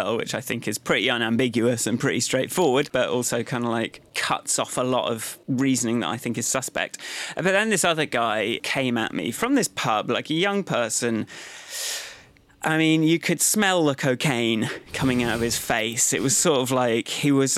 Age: 30-49